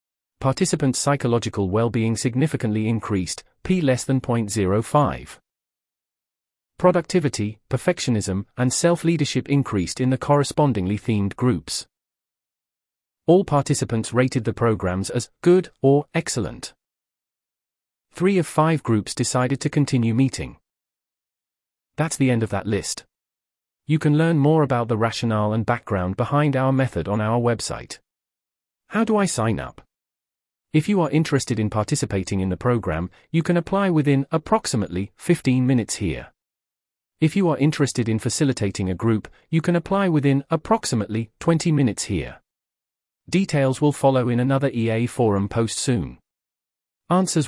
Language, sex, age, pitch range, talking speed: English, male, 30-49, 110-150 Hz, 135 wpm